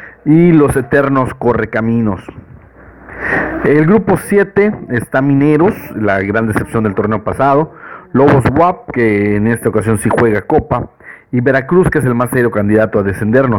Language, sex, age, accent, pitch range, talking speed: Spanish, male, 50-69, Mexican, 110-150 Hz, 160 wpm